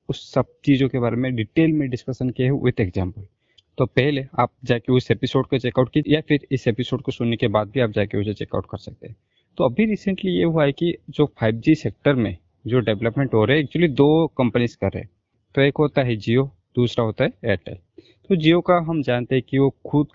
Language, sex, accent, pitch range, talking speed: Hindi, male, native, 115-145 Hz, 80 wpm